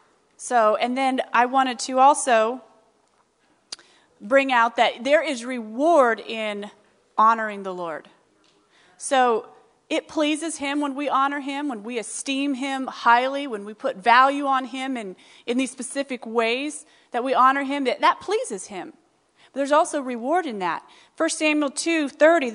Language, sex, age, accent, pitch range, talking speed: English, female, 30-49, American, 235-300 Hz, 155 wpm